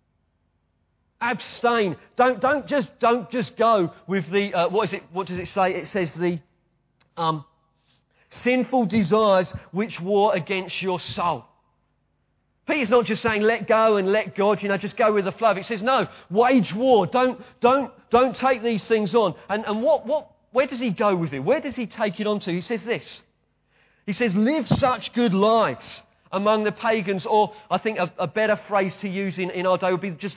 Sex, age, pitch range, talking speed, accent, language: male, 40-59, 175-225 Hz, 200 wpm, British, English